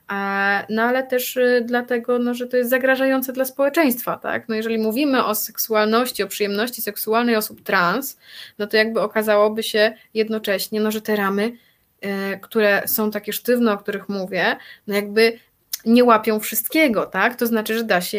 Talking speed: 165 wpm